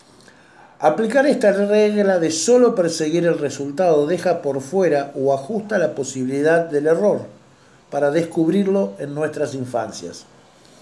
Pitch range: 140-190 Hz